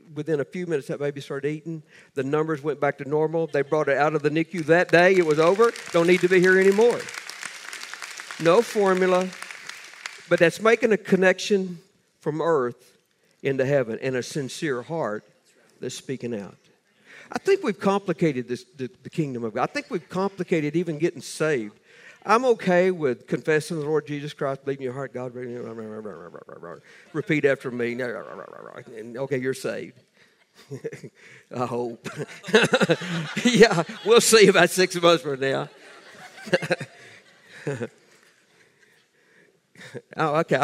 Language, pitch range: English, 140-185 Hz